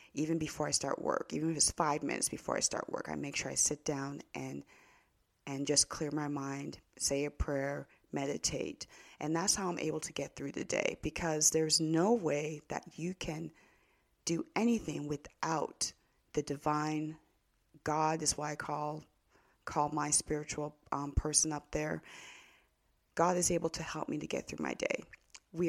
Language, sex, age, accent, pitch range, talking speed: English, female, 30-49, American, 150-165 Hz, 180 wpm